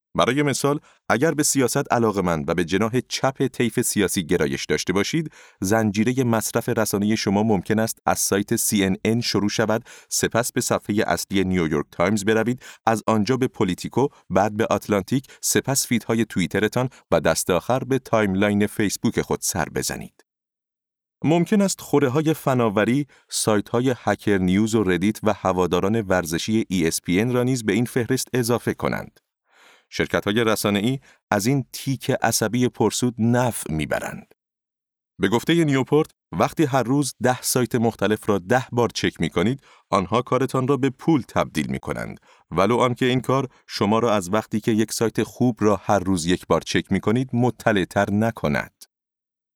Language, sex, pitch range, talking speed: Persian, male, 105-130 Hz, 155 wpm